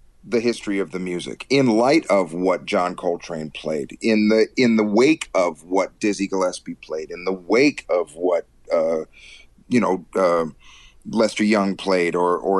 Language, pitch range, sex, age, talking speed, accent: English, 85-115 Hz, male, 40-59, 170 wpm, American